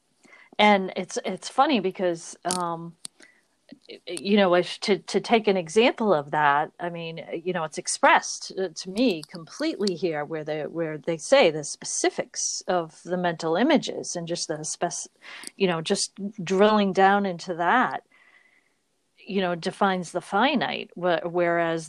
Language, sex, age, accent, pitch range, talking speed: English, female, 40-59, American, 170-200 Hz, 150 wpm